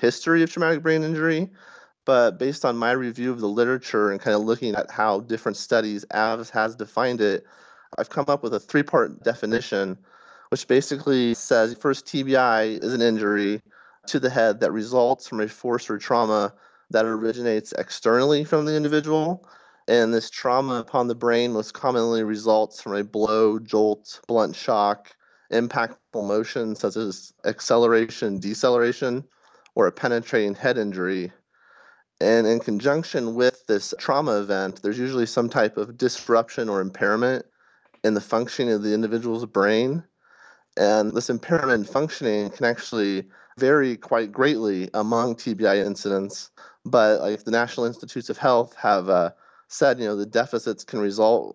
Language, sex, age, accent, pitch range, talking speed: English, male, 30-49, American, 105-125 Hz, 155 wpm